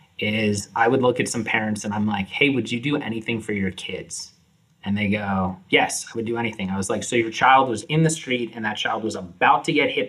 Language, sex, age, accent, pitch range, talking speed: English, male, 30-49, American, 115-165 Hz, 260 wpm